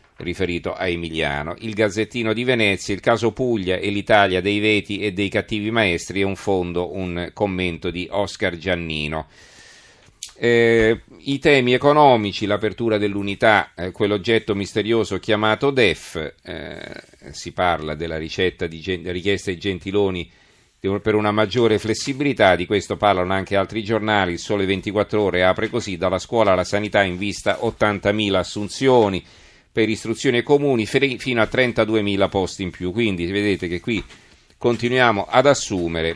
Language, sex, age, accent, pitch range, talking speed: Italian, male, 40-59, native, 90-110 Hz, 145 wpm